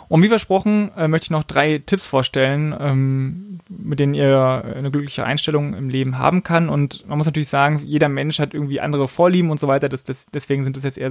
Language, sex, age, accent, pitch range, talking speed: German, male, 20-39, German, 130-155 Hz, 215 wpm